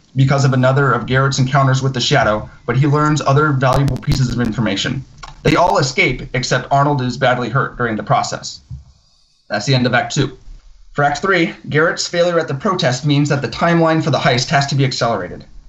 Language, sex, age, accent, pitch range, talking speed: English, male, 30-49, American, 125-150 Hz, 205 wpm